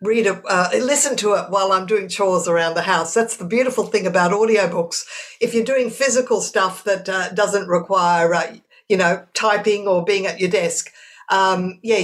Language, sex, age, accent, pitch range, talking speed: English, female, 50-69, Australian, 180-225 Hz, 195 wpm